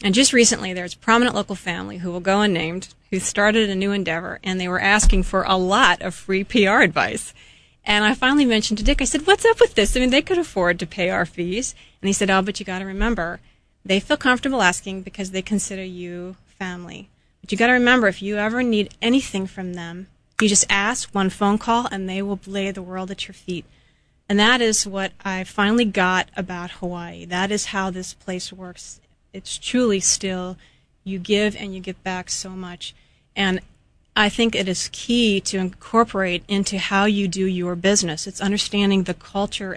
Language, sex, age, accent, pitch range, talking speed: English, female, 30-49, American, 180-205 Hz, 210 wpm